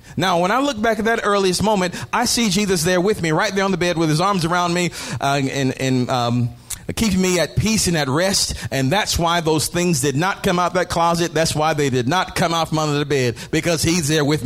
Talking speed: 255 wpm